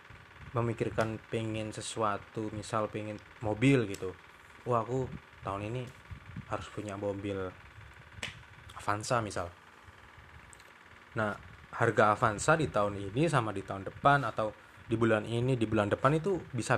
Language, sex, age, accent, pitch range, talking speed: Indonesian, male, 20-39, native, 100-120 Hz, 125 wpm